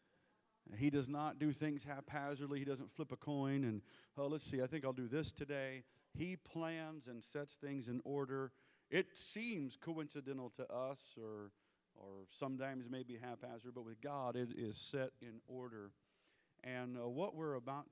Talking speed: 170 wpm